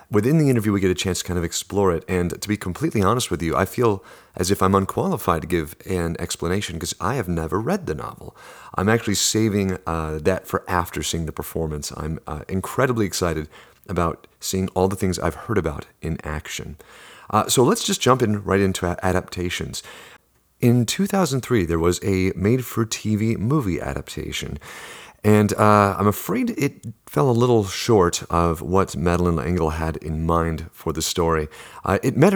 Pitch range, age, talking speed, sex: 85-105 Hz, 30-49, 185 wpm, male